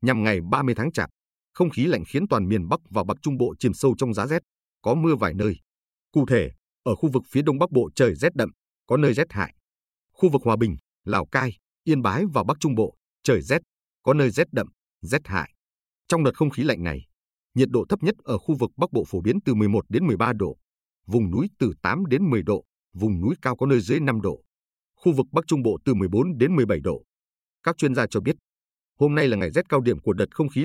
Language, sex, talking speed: Vietnamese, male, 245 wpm